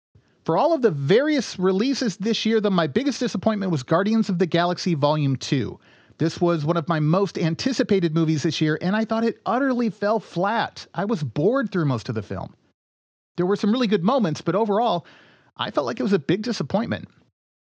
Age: 40-59